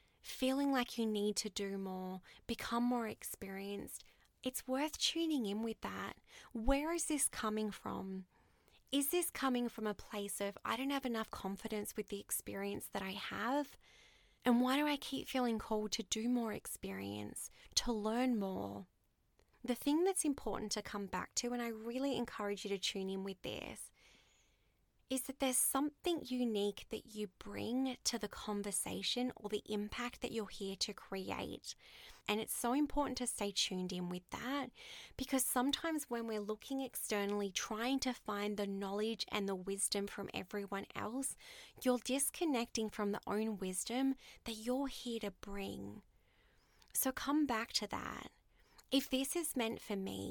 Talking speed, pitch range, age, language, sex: 165 wpm, 200-260 Hz, 20-39, English, female